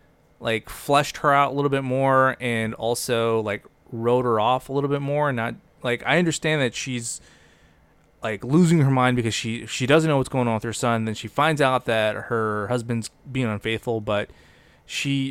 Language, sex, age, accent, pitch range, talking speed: English, male, 20-39, American, 110-140 Hz, 200 wpm